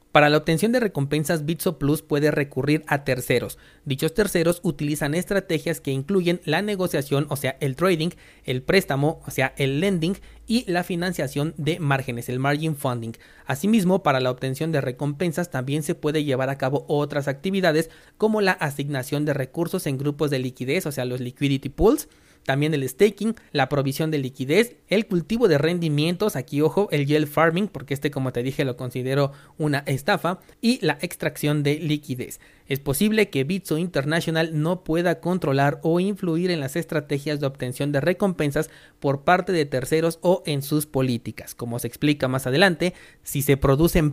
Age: 30-49